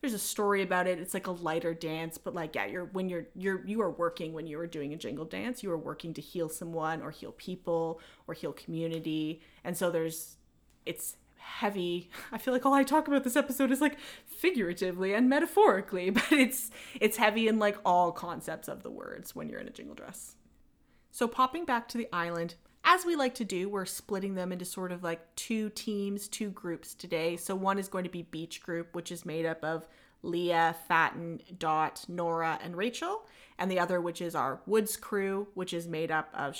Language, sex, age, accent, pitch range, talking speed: English, female, 20-39, American, 170-215 Hz, 215 wpm